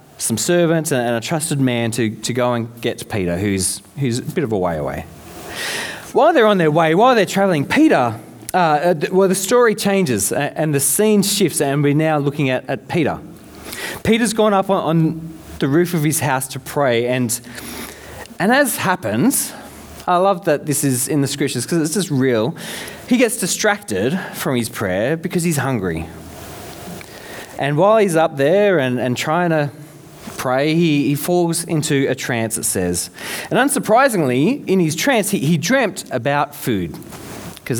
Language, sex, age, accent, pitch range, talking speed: English, male, 20-39, Australian, 125-195 Hz, 175 wpm